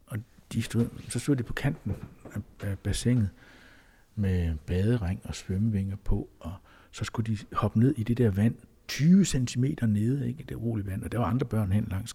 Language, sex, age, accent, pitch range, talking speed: Danish, male, 60-79, native, 110-150 Hz, 190 wpm